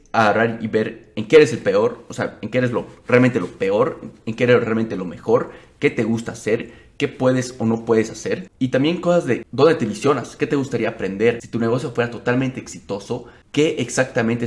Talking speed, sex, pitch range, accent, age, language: 215 wpm, male, 105-125 Hz, Mexican, 30-49, Spanish